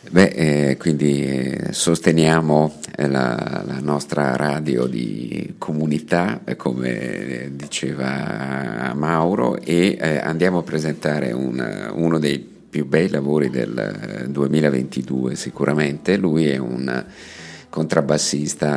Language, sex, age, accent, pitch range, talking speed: Italian, male, 50-69, native, 70-80 Hz, 95 wpm